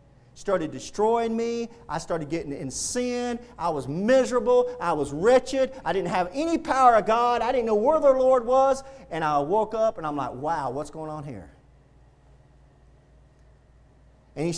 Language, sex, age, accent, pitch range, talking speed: English, male, 40-59, American, 165-265 Hz, 170 wpm